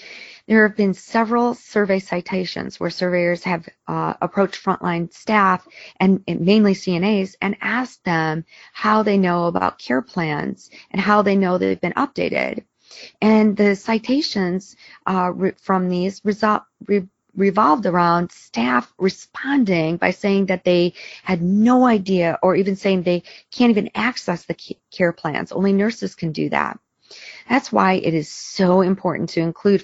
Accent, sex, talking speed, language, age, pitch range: American, female, 145 wpm, English, 40-59, 170-200 Hz